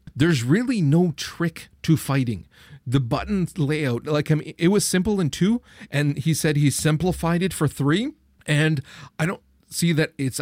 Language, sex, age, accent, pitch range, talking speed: English, male, 40-59, American, 120-160 Hz, 180 wpm